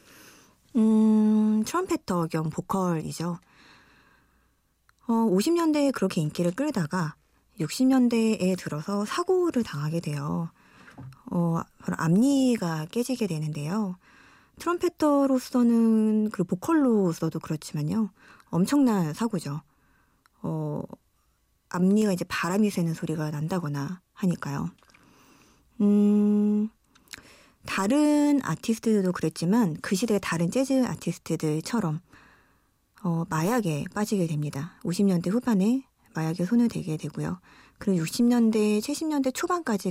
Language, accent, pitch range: Korean, native, 165-235 Hz